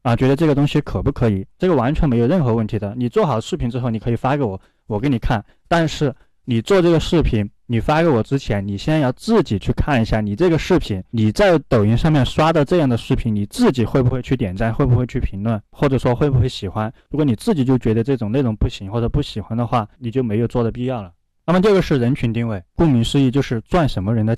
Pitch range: 110-140 Hz